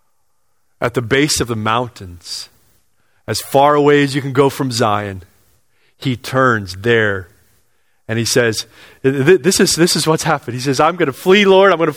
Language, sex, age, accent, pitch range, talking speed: English, male, 30-49, American, 105-155 Hz, 185 wpm